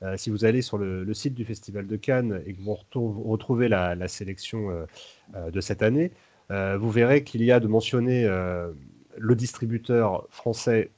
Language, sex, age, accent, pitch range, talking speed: French, male, 30-49, French, 100-120 Hz, 190 wpm